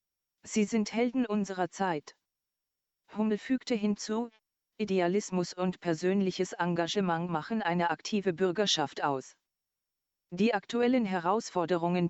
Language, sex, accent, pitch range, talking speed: German, female, German, 175-205 Hz, 100 wpm